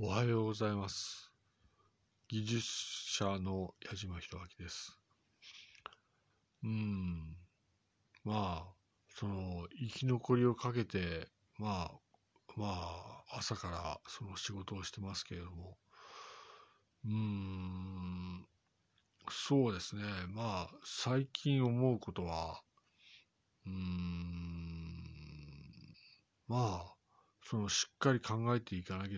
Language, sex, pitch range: Japanese, male, 90-110 Hz